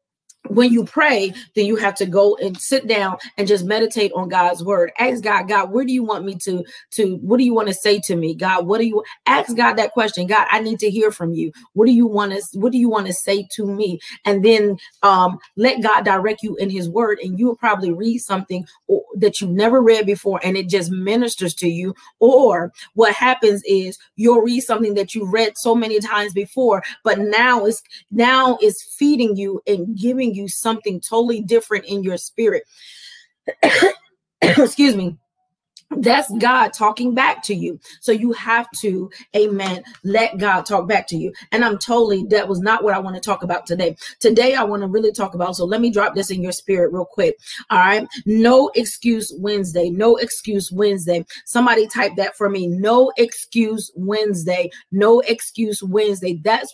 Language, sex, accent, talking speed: English, female, American, 200 wpm